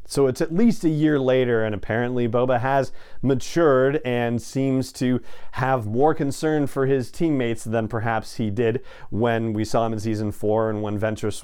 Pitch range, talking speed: 110-145 Hz, 185 wpm